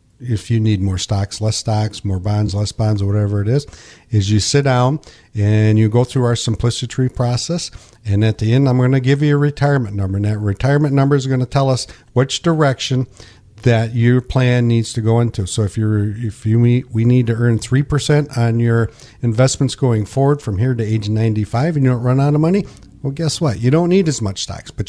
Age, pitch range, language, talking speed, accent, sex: 50-69, 110-130 Hz, English, 230 wpm, American, male